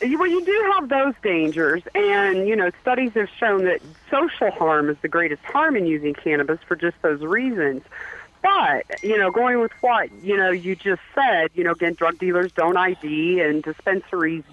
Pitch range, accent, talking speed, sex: 165-240 Hz, American, 190 wpm, female